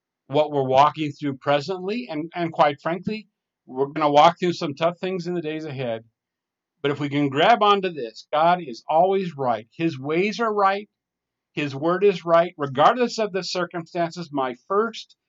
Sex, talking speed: male, 180 wpm